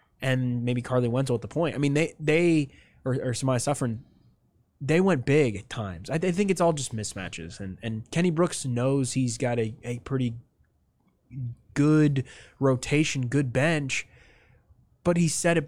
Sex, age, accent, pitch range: male, 20-39, American, 125-165 Hz